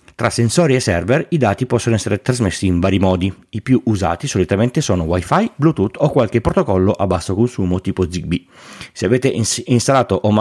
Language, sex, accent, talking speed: Italian, male, native, 180 wpm